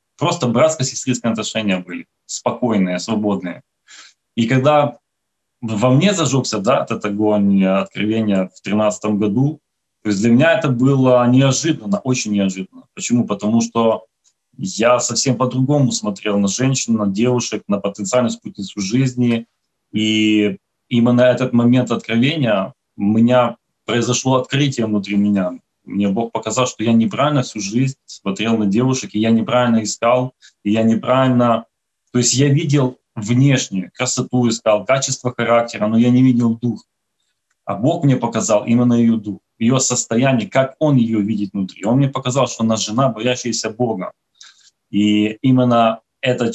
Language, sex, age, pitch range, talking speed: Ukrainian, male, 20-39, 105-130 Hz, 145 wpm